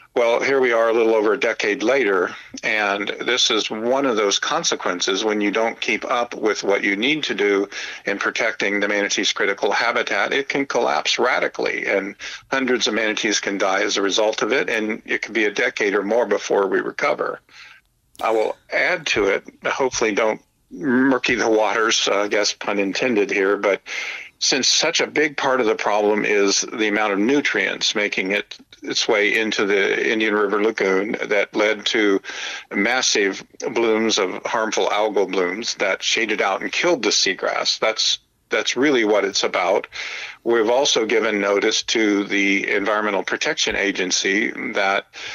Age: 50-69